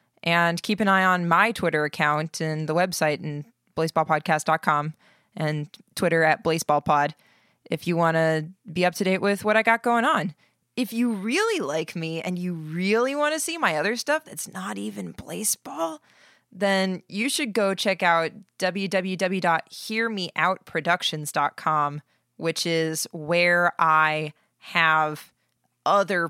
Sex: female